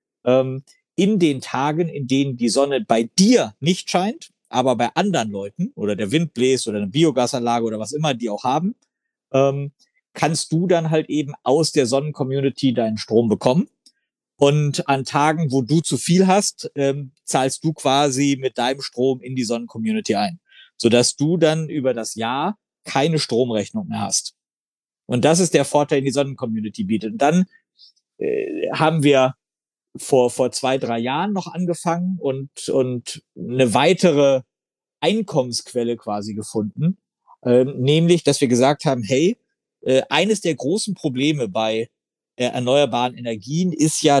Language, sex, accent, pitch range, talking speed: German, male, German, 125-170 Hz, 150 wpm